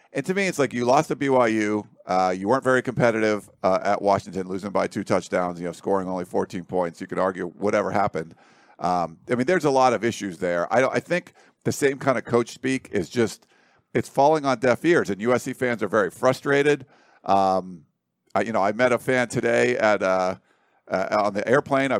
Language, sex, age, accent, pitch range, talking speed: English, male, 50-69, American, 105-135 Hz, 220 wpm